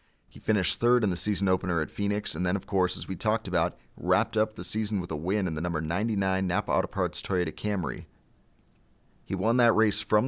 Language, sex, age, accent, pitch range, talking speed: English, male, 30-49, American, 90-105 Hz, 220 wpm